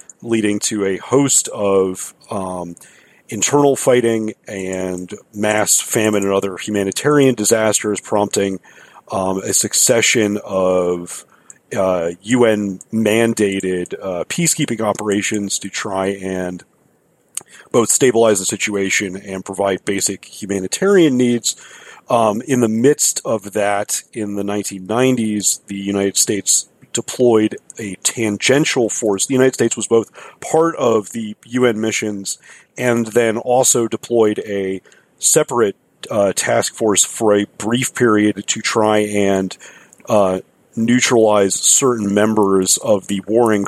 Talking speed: 115 wpm